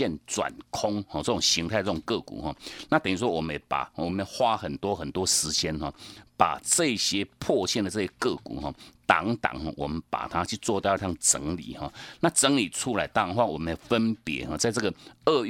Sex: male